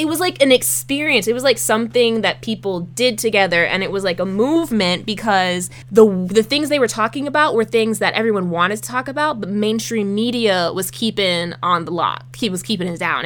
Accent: American